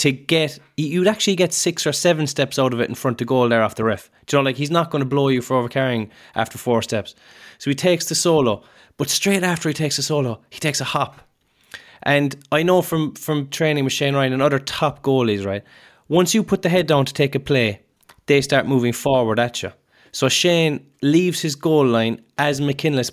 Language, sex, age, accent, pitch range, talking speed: English, male, 20-39, Irish, 125-155 Hz, 230 wpm